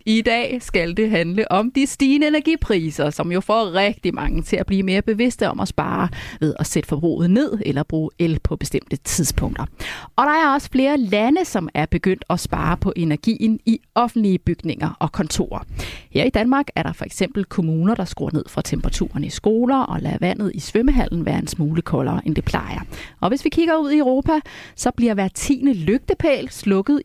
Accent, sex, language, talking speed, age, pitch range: native, female, Danish, 200 wpm, 30-49, 170-245 Hz